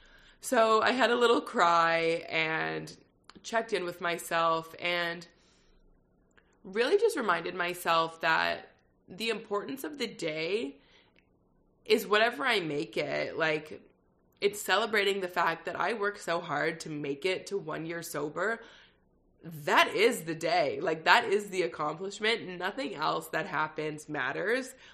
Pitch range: 165-225 Hz